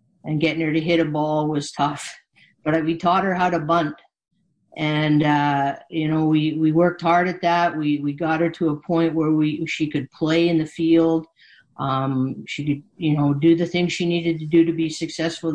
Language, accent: English, American